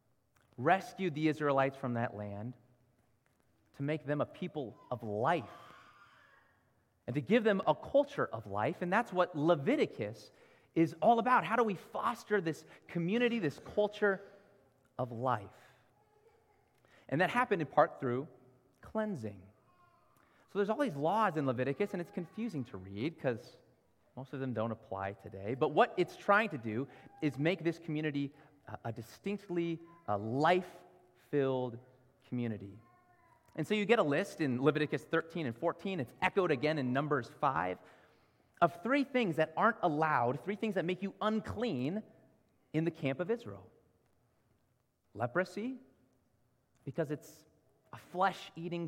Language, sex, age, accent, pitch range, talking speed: English, male, 30-49, American, 125-190 Hz, 145 wpm